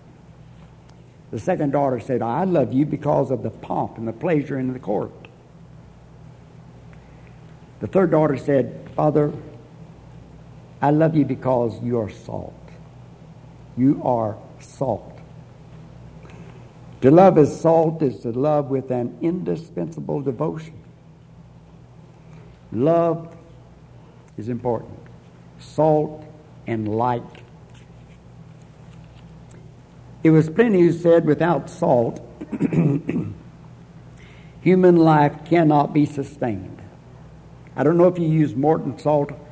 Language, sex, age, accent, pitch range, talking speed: English, male, 60-79, American, 130-160 Hz, 105 wpm